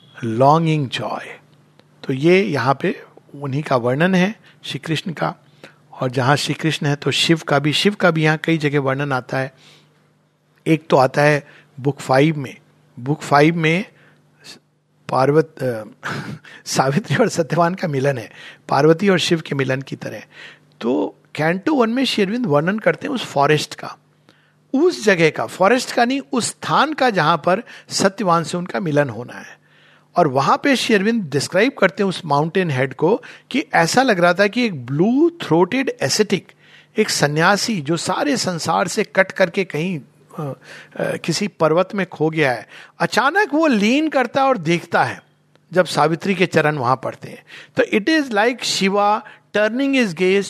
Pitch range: 145-195 Hz